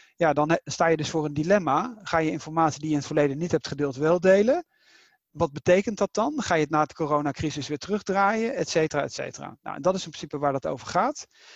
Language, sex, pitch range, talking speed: Dutch, male, 140-175 Hz, 245 wpm